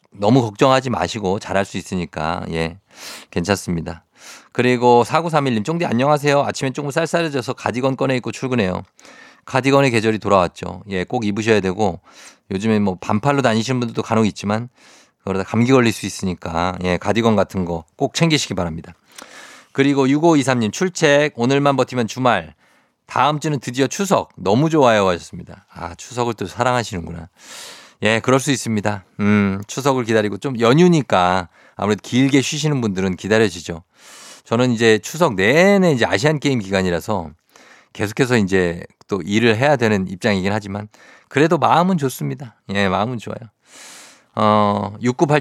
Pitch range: 100-135 Hz